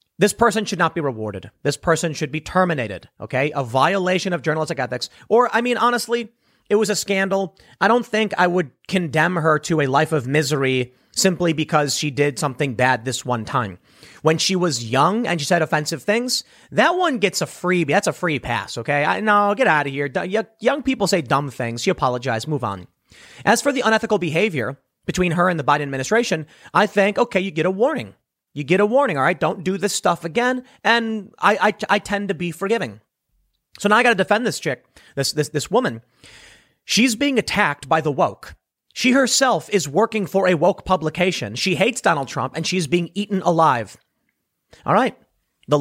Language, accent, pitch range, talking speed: English, American, 145-210 Hz, 205 wpm